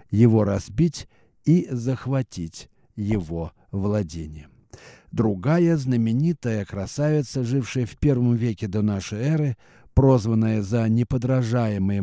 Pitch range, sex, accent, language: 105-135 Hz, male, native, Russian